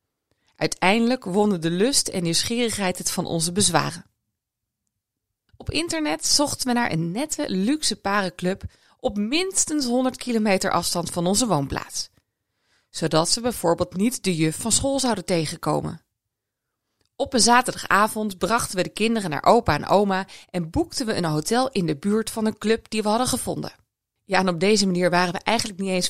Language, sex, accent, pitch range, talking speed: Dutch, female, Dutch, 170-240 Hz, 170 wpm